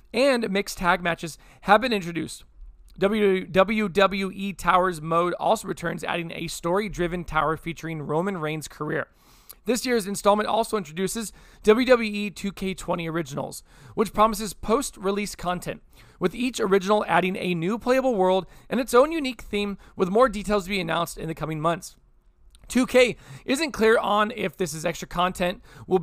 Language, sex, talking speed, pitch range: English, male, 150 wpm, 175-220 Hz